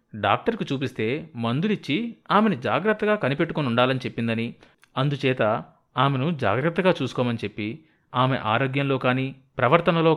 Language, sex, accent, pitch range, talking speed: Telugu, male, native, 115-160 Hz, 95 wpm